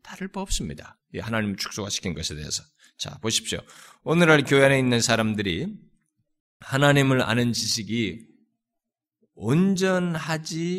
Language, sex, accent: Korean, male, native